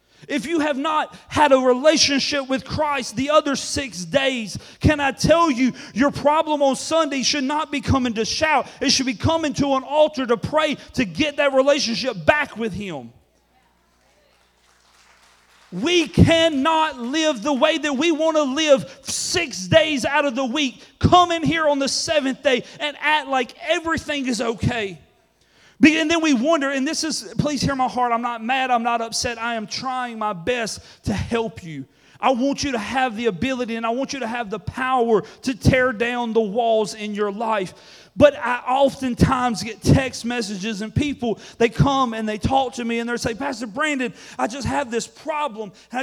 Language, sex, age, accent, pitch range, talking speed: English, male, 40-59, American, 235-295 Hz, 190 wpm